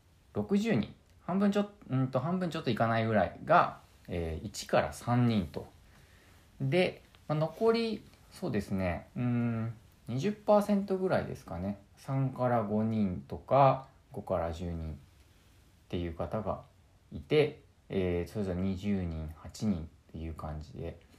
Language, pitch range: Japanese, 90-135 Hz